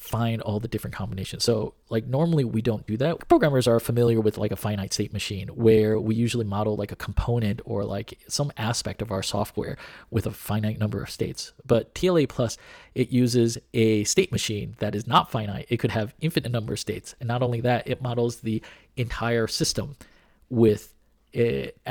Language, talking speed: English, 195 wpm